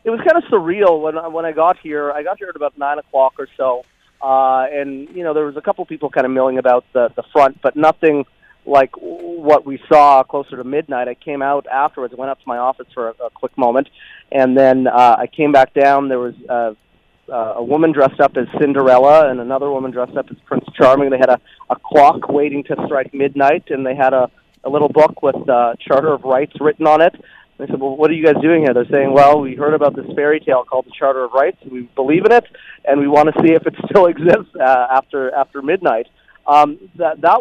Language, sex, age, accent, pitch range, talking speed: English, male, 30-49, American, 130-155 Hz, 245 wpm